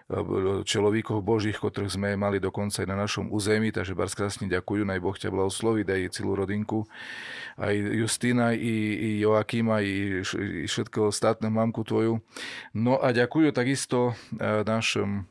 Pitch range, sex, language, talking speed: 100-110 Hz, male, Slovak, 135 wpm